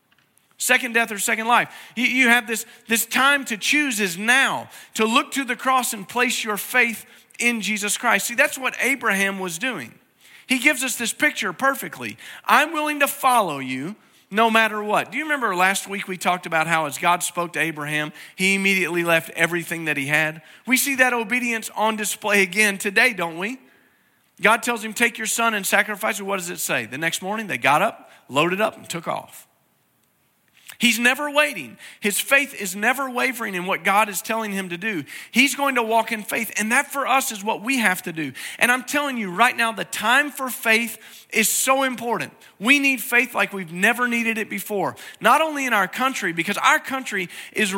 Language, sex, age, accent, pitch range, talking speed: English, male, 40-59, American, 200-255 Hz, 205 wpm